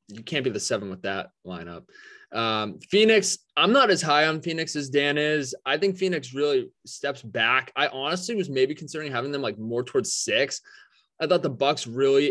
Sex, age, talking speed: male, 20-39, 200 wpm